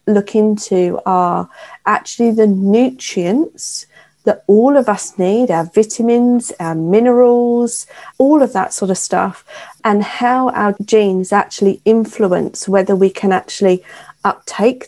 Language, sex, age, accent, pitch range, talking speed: English, female, 40-59, British, 195-245 Hz, 130 wpm